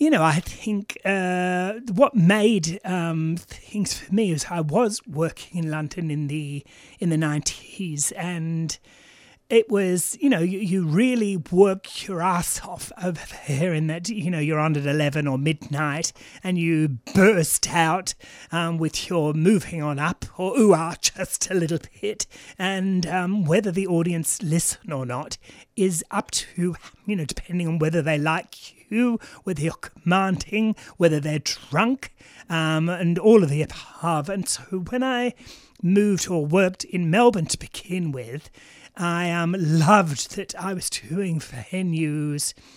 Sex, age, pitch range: male, 30-49, 155-195 Hz